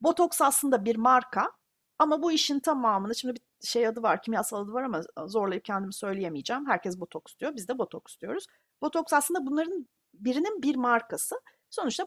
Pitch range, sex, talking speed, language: 215-300 Hz, female, 170 wpm, Turkish